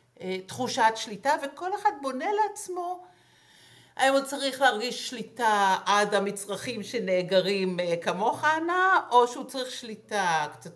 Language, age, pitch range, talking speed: Hebrew, 60-79, 195-260 Hz, 115 wpm